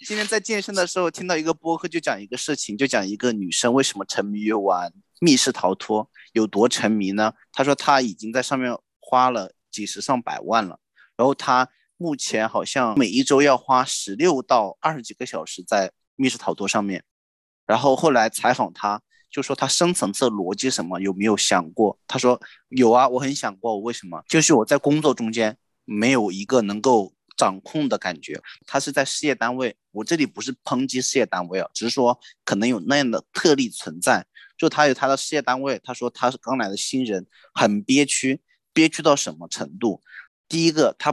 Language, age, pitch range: Chinese, 20-39, 110-145 Hz